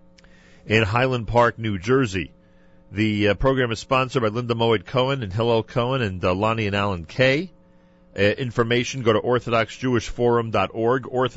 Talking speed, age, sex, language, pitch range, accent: 150 wpm, 40-59, male, English, 100-135 Hz, American